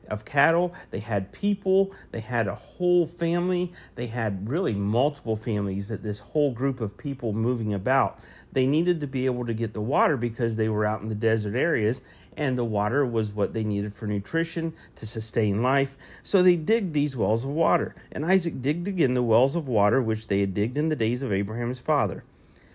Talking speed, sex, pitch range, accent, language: 205 wpm, male, 100-140 Hz, American, English